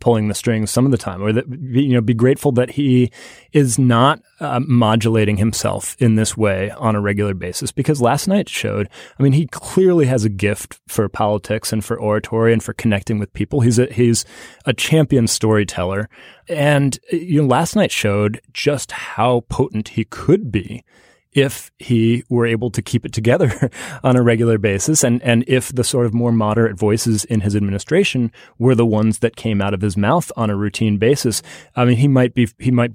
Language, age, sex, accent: English, 30-49, male, American